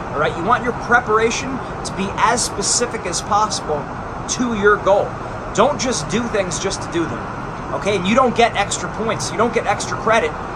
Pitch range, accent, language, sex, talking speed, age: 180-225 Hz, American, English, male, 200 wpm, 30-49